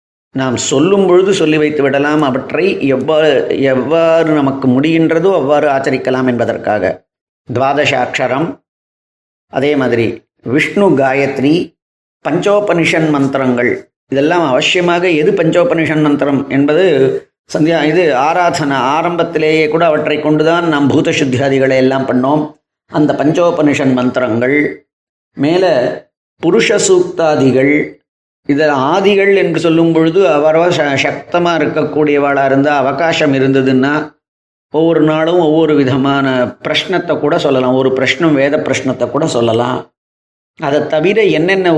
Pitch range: 135-165 Hz